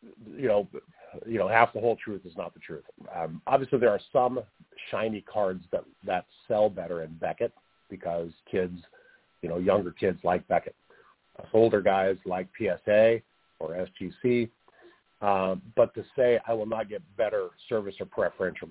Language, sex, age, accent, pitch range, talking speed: English, male, 50-69, American, 90-105 Hz, 165 wpm